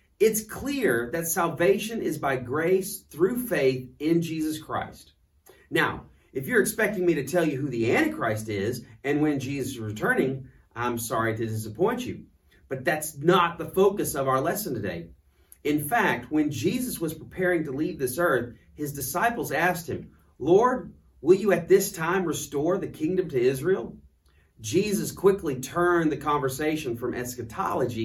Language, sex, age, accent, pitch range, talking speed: English, male, 40-59, American, 115-175 Hz, 160 wpm